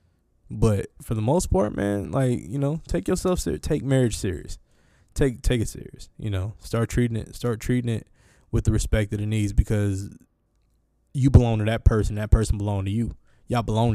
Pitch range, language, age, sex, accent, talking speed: 100-115 Hz, English, 20-39, male, American, 200 wpm